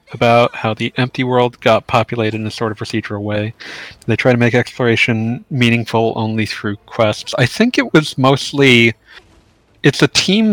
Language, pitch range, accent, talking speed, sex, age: English, 105-120 Hz, American, 170 wpm, male, 30-49